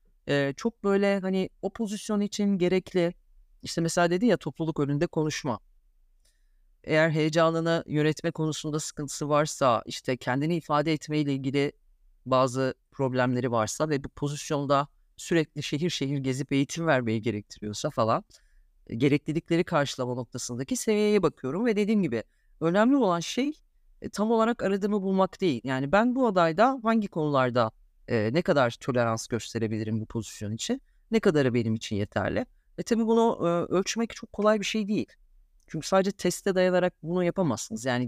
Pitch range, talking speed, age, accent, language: 135-195 Hz, 145 wpm, 30-49, native, Turkish